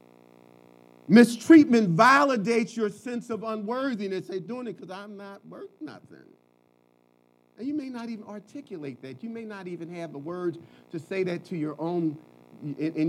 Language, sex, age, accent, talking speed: English, male, 40-59, American, 160 wpm